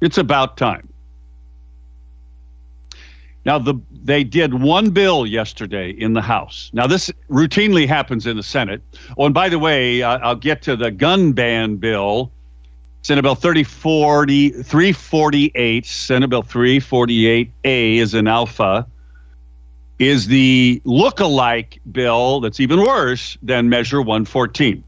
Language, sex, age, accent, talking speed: English, male, 50-69, American, 125 wpm